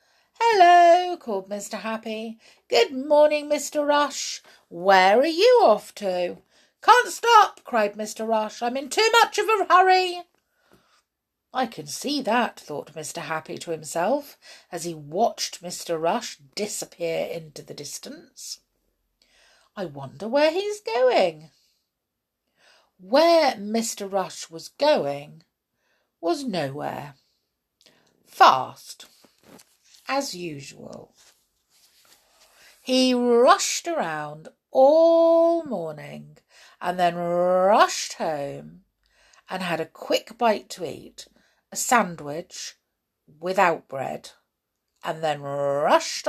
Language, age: English, 50-69